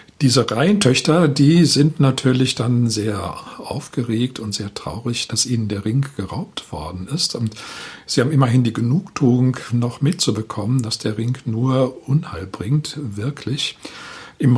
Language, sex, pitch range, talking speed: German, male, 110-140 Hz, 140 wpm